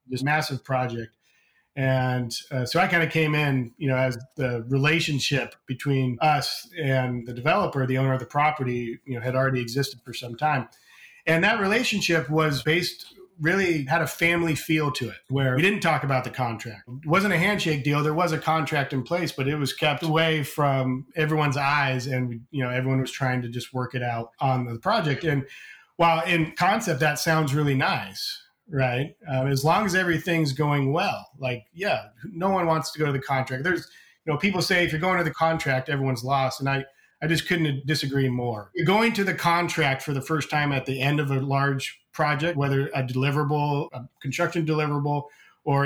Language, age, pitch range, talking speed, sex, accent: English, 30-49, 130-165 Hz, 205 wpm, male, American